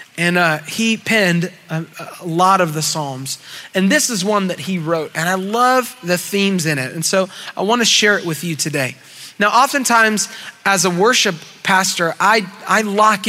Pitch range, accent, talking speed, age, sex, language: 165-215 Hz, American, 195 wpm, 30-49, male, English